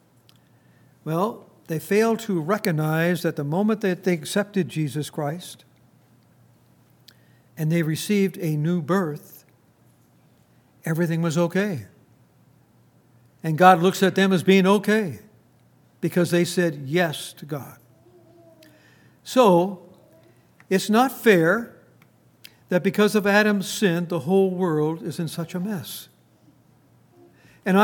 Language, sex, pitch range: English, male, 155-200 Hz